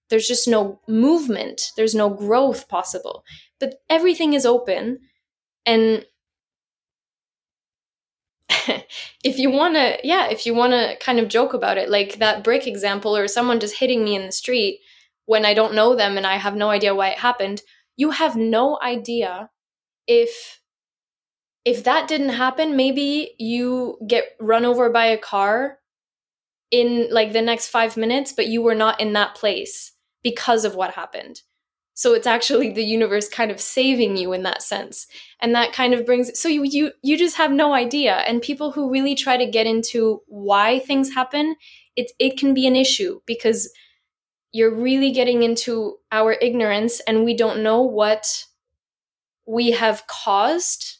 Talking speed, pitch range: 170 wpm, 215-265 Hz